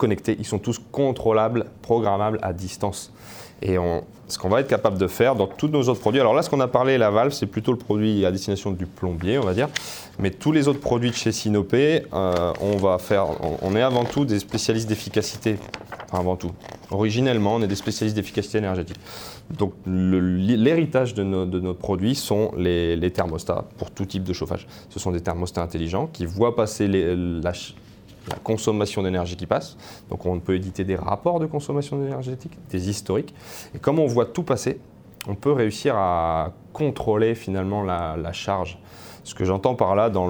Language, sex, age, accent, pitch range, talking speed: French, male, 20-39, French, 90-110 Hz, 200 wpm